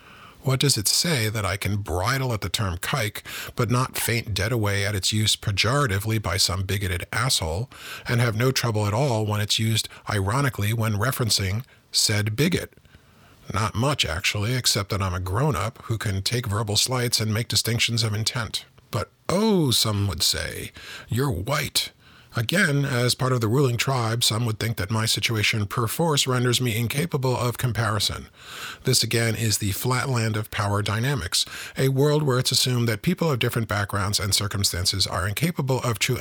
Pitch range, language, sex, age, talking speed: 100-125 Hz, English, male, 40-59, 175 wpm